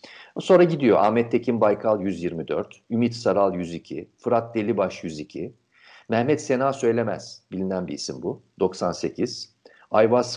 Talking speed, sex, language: 120 wpm, male, Turkish